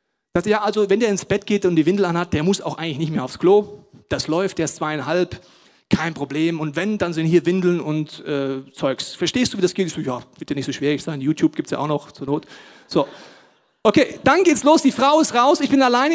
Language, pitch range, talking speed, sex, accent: German, 165-245 Hz, 255 wpm, male, German